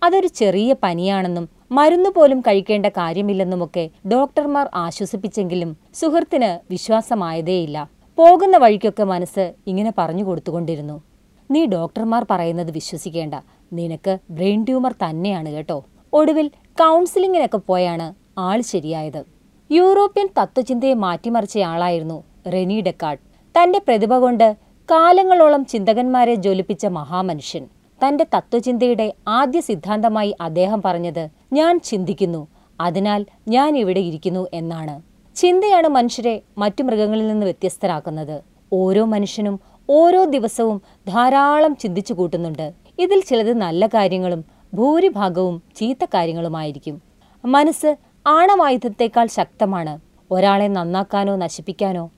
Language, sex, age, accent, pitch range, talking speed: Malayalam, female, 30-49, native, 175-255 Hz, 95 wpm